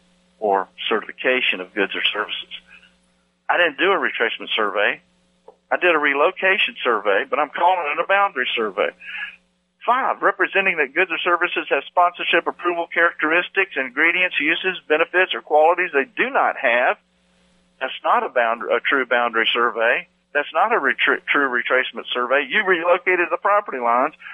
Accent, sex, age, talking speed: American, male, 50-69, 150 wpm